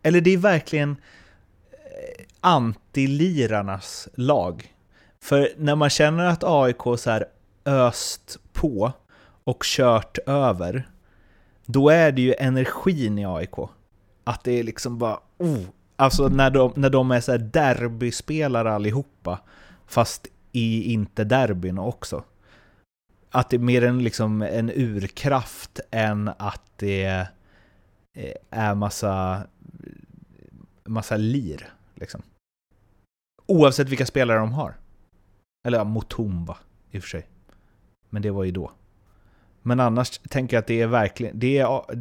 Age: 30-49